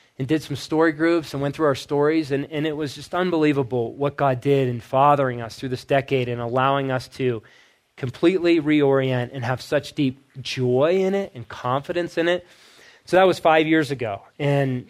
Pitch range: 130-160 Hz